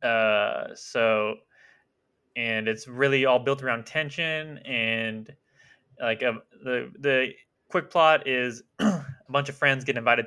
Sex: male